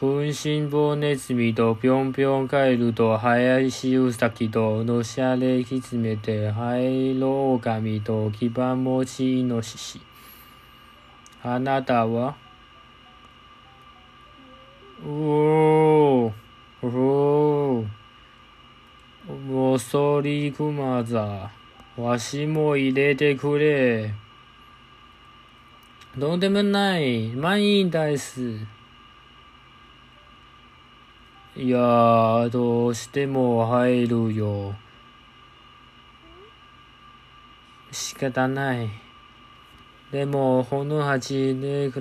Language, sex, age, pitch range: Japanese, male, 20-39, 120-140 Hz